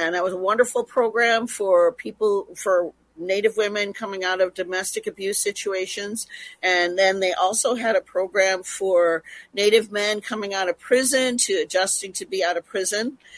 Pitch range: 190-250 Hz